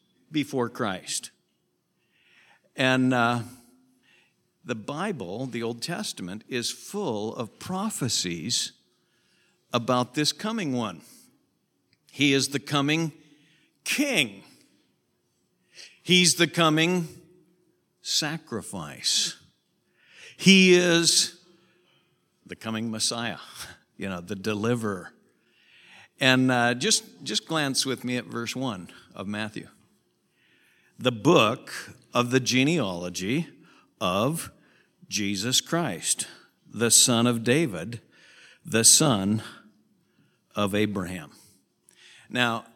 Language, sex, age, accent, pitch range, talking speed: English, male, 60-79, American, 110-145 Hz, 90 wpm